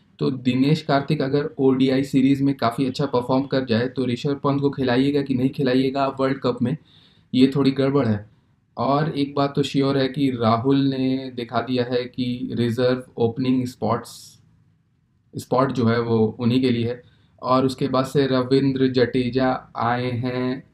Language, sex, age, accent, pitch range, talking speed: Hindi, male, 20-39, native, 120-135 Hz, 170 wpm